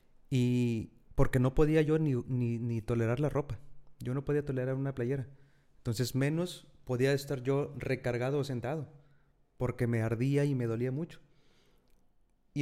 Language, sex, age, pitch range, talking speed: Spanish, male, 30-49, 120-145 Hz, 155 wpm